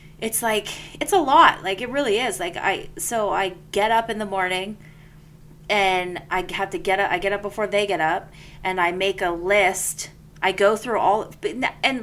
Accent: American